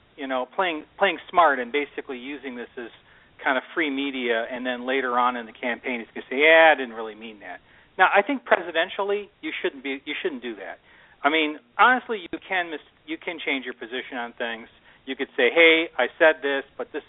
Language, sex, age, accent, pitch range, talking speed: English, male, 40-59, American, 125-170 Hz, 220 wpm